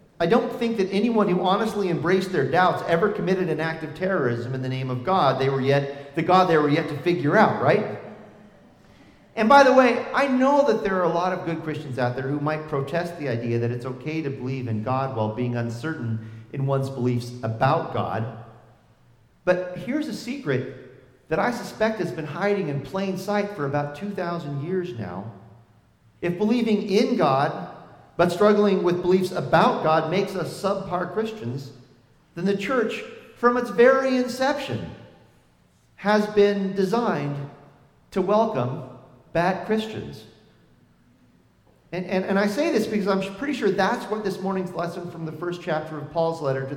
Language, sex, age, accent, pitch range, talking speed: English, male, 40-59, American, 135-210 Hz, 175 wpm